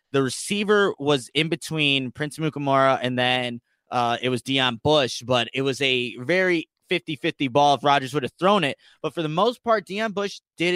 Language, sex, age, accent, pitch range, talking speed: English, male, 20-39, American, 140-170 Hz, 200 wpm